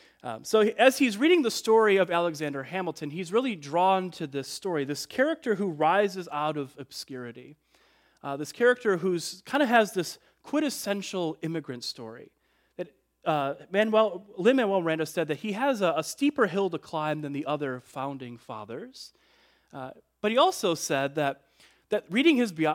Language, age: English, 30-49